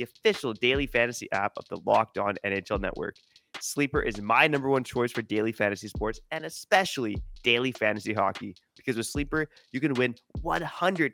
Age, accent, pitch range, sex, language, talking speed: 20-39, American, 110-140 Hz, male, English, 170 wpm